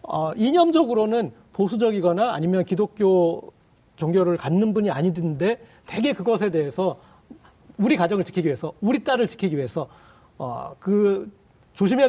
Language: Korean